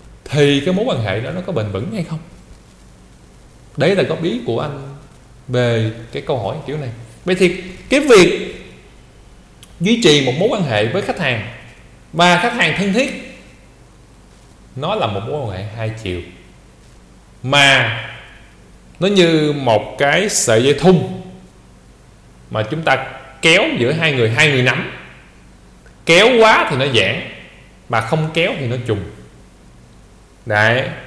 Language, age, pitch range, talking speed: Vietnamese, 20-39, 110-175 Hz, 155 wpm